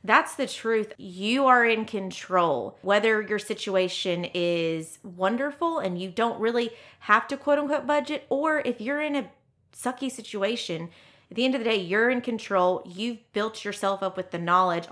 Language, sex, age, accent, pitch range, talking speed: English, female, 30-49, American, 180-225 Hz, 175 wpm